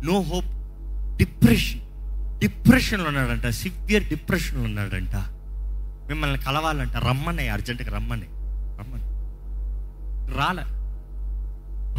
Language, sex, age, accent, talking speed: Telugu, male, 30-49, native, 75 wpm